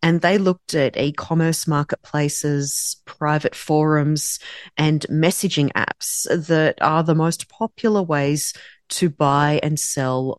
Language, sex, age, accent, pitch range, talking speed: English, female, 30-49, Australian, 145-190 Hz, 120 wpm